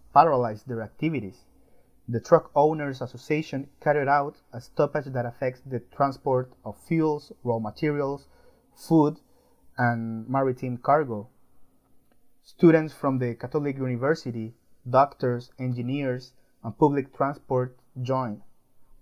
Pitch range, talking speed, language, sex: 120-145 Hz, 105 wpm, English, male